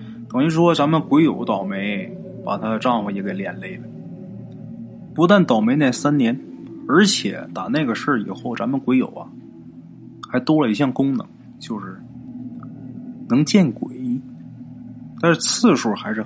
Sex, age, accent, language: male, 20-39, native, Chinese